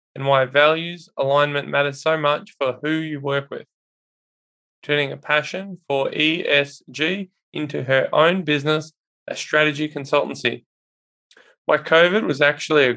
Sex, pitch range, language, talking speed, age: male, 145-170 Hz, English, 135 wpm, 20-39